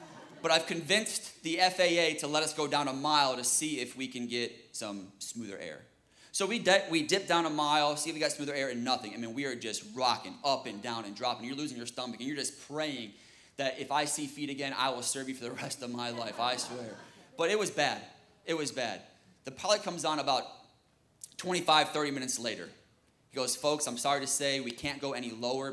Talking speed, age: 240 wpm, 20-39